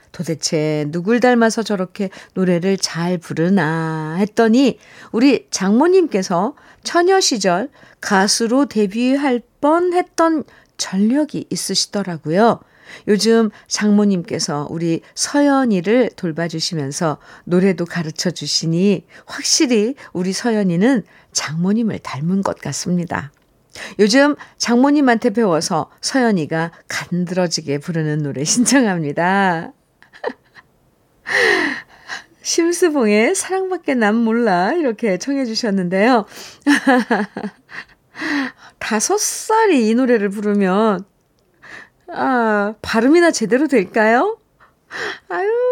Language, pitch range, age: Korean, 185-280 Hz, 50-69